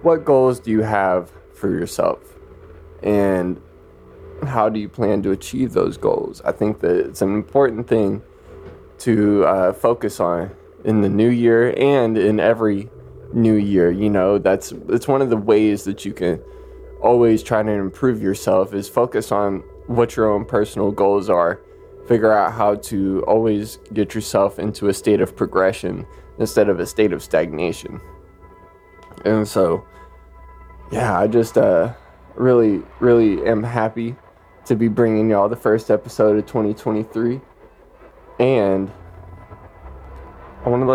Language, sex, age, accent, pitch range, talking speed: English, male, 20-39, American, 95-115 Hz, 145 wpm